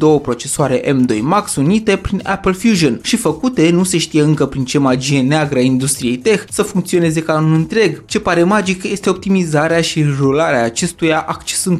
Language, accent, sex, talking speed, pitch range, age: Romanian, native, male, 175 wpm, 135-180 Hz, 20-39